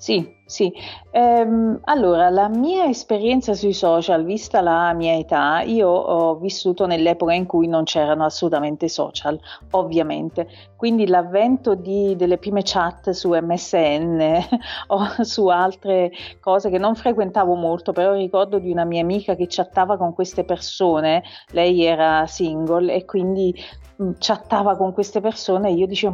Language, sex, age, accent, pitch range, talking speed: Italian, female, 40-59, native, 170-210 Hz, 140 wpm